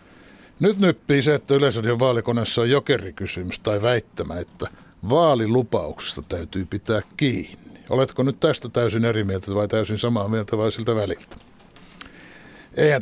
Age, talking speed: 60-79, 135 wpm